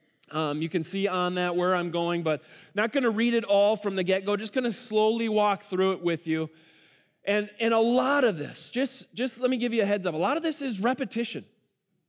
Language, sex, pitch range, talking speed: English, male, 170-220 Hz, 250 wpm